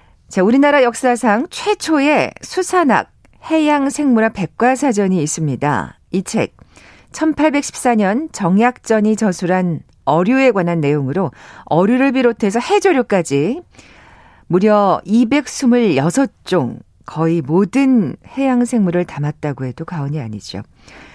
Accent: native